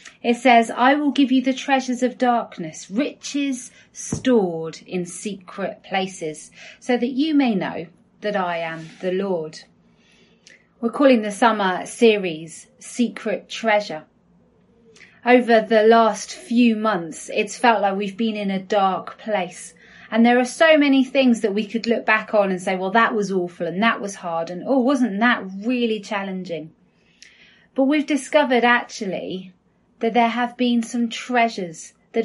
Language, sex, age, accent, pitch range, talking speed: English, female, 30-49, British, 190-245 Hz, 160 wpm